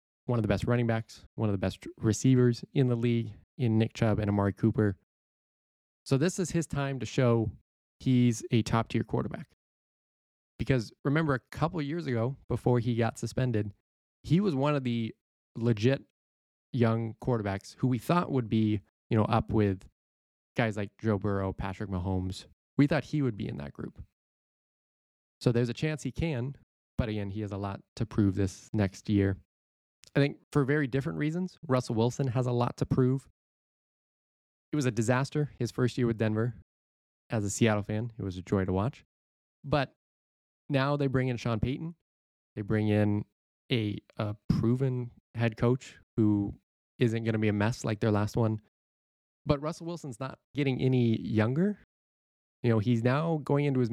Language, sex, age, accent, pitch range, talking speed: English, male, 20-39, American, 105-130 Hz, 180 wpm